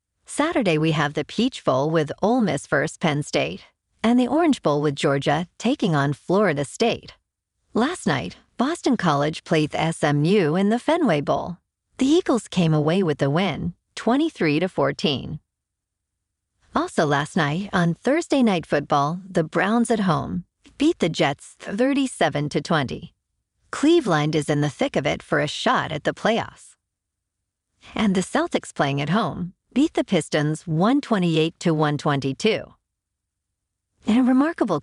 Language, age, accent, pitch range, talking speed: English, 40-59, American, 145-225 Hz, 145 wpm